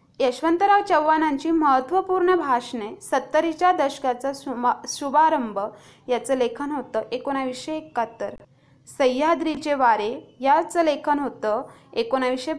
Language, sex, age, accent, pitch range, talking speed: Marathi, female, 20-39, native, 240-300 Hz, 85 wpm